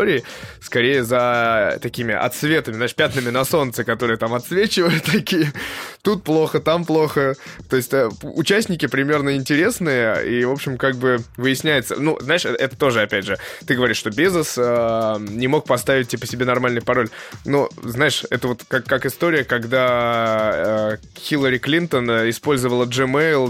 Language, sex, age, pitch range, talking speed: Russian, male, 20-39, 115-145 Hz, 150 wpm